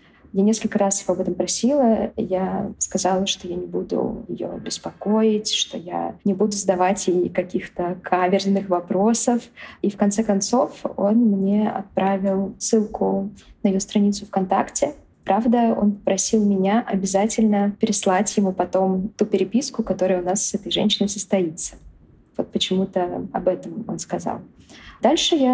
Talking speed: 140 wpm